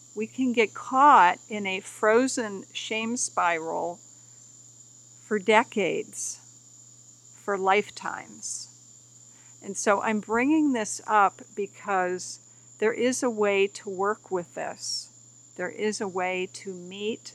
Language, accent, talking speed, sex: English, American, 120 wpm, female